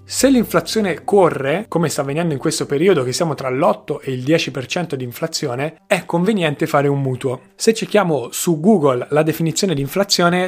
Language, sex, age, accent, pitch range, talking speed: Italian, male, 20-39, native, 140-180 Hz, 180 wpm